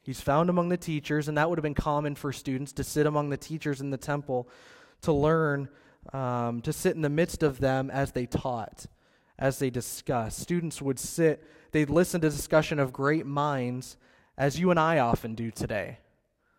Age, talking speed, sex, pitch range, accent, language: 20-39, 195 wpm, male, 120-145 Hz, American, English